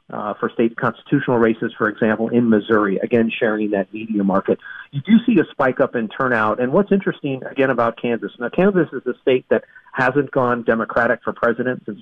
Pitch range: 115-145 Hz